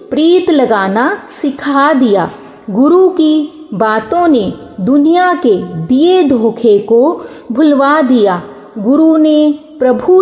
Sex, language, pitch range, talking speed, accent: female, Hindi, 235-315 Hz, 105 wpm, native